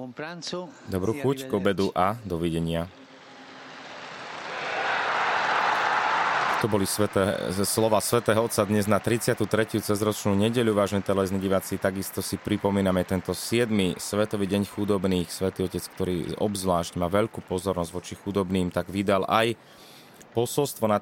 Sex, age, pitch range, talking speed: male, 30-49, 90-105 Hz, 120 wpm